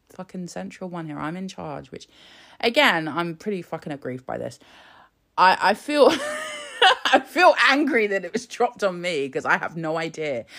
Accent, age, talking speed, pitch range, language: British, 30-49, 180 wpm, 130-165 Hz, English